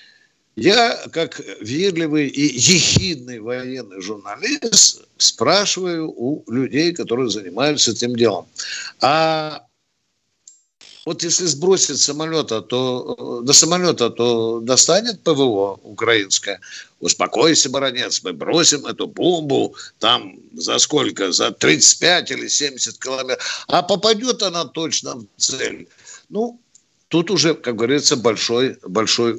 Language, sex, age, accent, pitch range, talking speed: Russian, male, 60-79, native, 125-180 Hz, 110 wpm